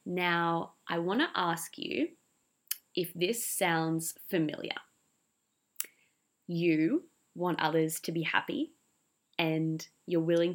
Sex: female